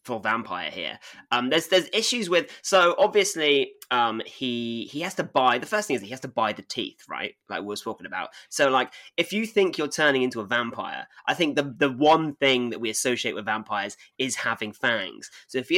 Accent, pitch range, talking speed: British, 115-165 Hz, 230 wpm